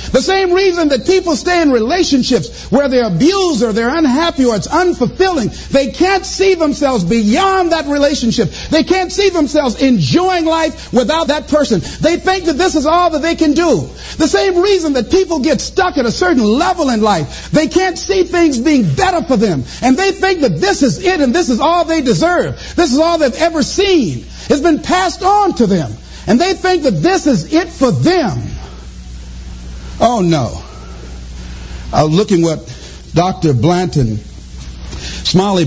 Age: 50-69